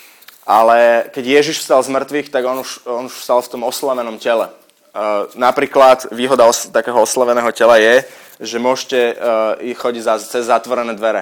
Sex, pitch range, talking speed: male, 120-150 Hz, 170 wpm